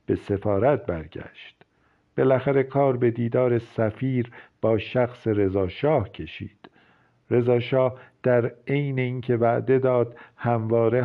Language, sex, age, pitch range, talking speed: Persian, male, 50-69, 110-125 Hz, 105 wpm